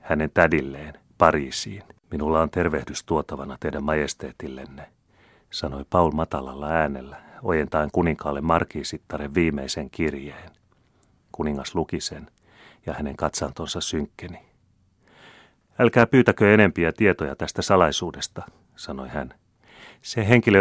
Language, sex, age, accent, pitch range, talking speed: Finnish, male, 30-49, native, 75-100 Hz, 100 wpm